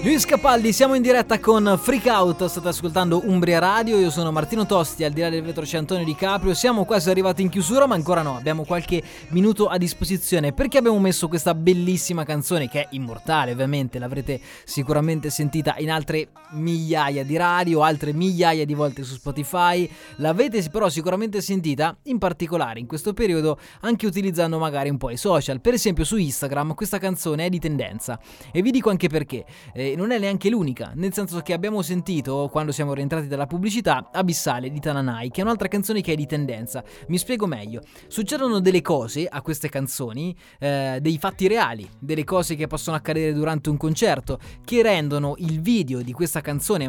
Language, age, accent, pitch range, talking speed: Italian, 20-39, native, 145-185 Hz, 185 wpm